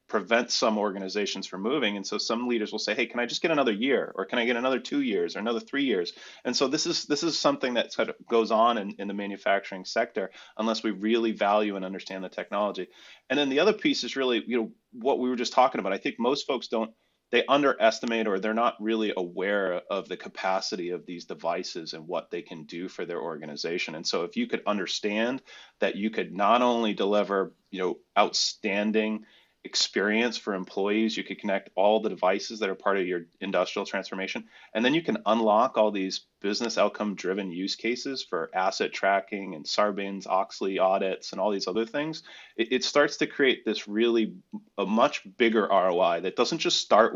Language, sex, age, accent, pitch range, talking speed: English, male, 30-49, American, 100-125 Hz, 210 wpm